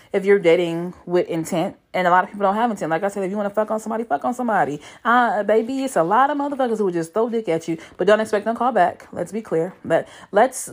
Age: 30-49